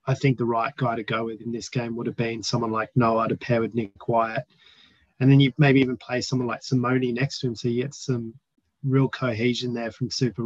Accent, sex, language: Australian, male, English